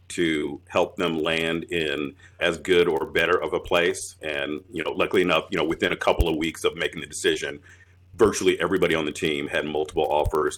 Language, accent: English, American